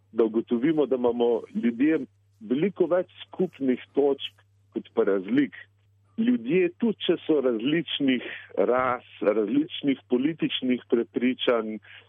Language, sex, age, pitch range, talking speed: Italian, male, 50-69, 105-130 Hz, 105 wpm